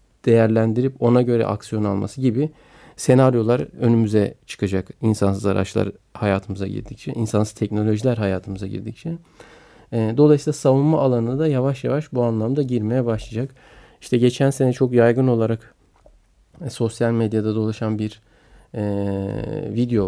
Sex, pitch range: male, 105-125 Hz